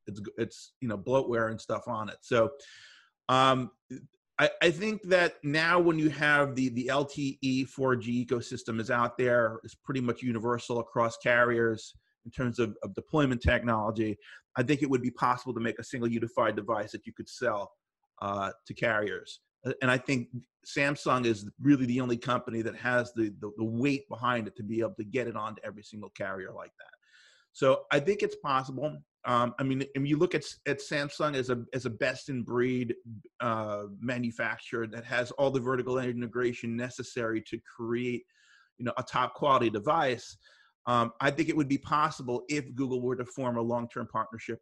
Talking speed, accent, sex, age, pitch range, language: 190 wpm, American, male, 30-49, 115-135 Hz, English